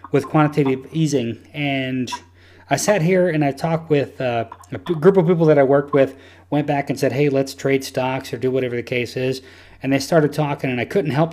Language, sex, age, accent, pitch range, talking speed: English, male, 30-49, American, 125-155 Hz, 220 wpm